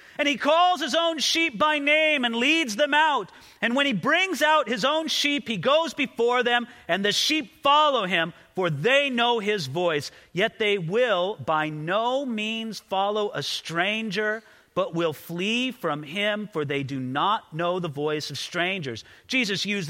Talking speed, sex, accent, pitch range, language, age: 180 wpm, male, American, 190-285 Hz, English, 40-59